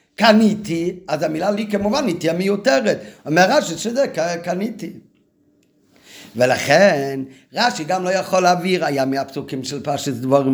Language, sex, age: Hebrew, male, 50-69